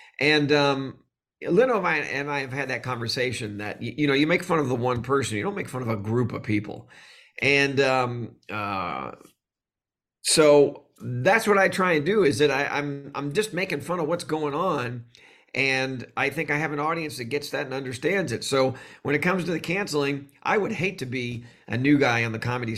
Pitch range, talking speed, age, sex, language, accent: 120-150 Hz, 220 wpm, 40-59, male, English, American